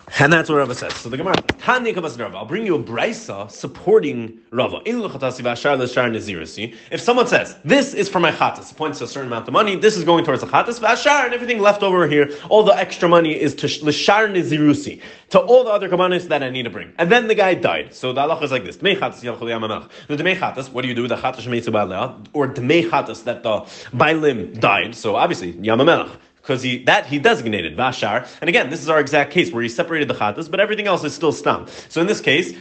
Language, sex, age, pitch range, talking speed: English, male, 30-49, 125-180 Hz, 200 wpm